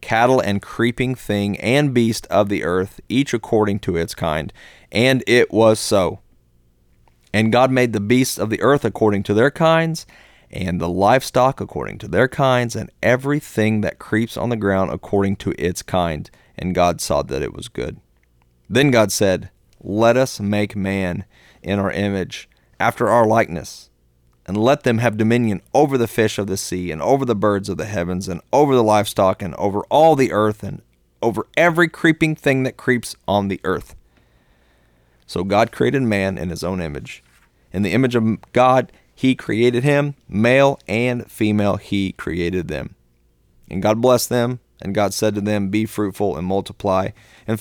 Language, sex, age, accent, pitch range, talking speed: English, male, 30-49, American, 90-120 Hz, 180 wpm